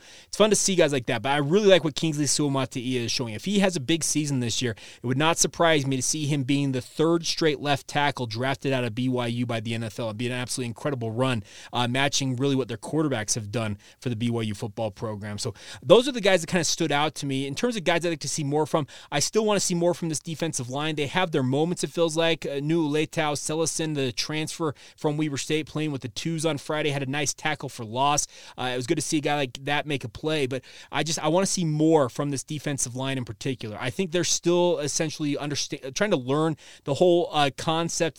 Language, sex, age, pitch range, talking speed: English, male, 30-49, 130-160 Hz, 260 wpm